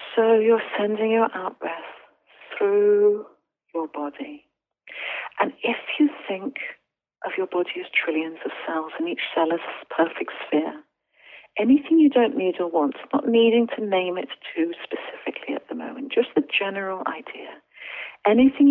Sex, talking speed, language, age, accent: female, 150 wpm, English, 50-69, British